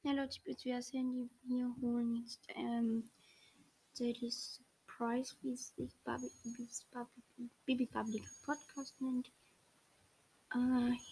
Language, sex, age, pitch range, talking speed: German, female, 20-39, 235-270 Hz, 115 wpm